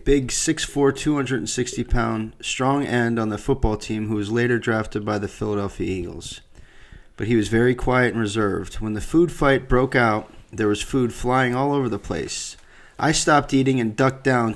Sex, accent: male, American